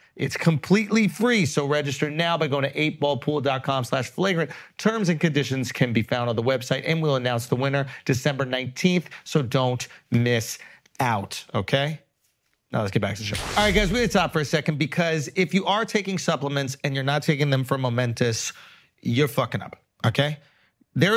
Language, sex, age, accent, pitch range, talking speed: English, male, 30-49, American, 125-165 Hz, 195 wpm